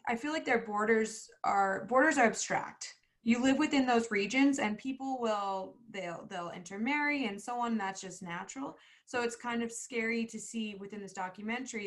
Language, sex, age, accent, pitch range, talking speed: English, female, 20-39, American, 195-230 Hz, 180 wpm